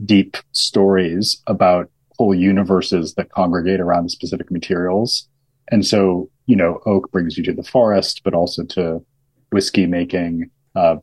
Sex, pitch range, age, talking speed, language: male, 85-125 Hz, 30-49, 140 wpm, English